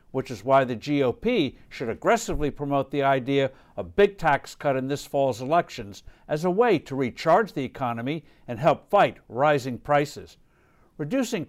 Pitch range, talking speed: 135-190 Hz, 160 wpm